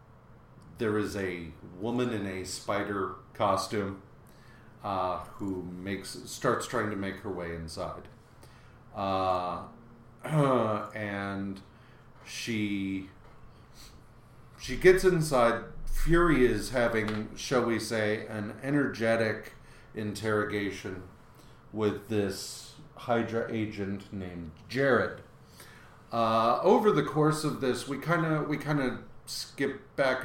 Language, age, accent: English, 40-59, American